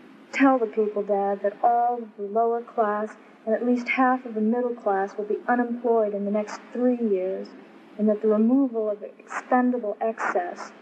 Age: 40-59